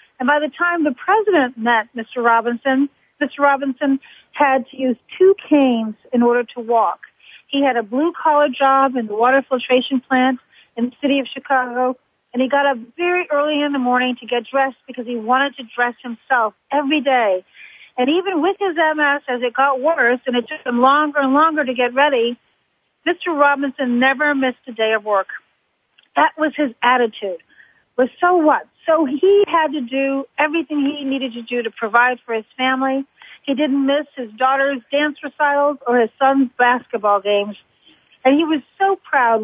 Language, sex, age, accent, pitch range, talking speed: English, female, 40-59, American, 245-295 Hz, 185 wpm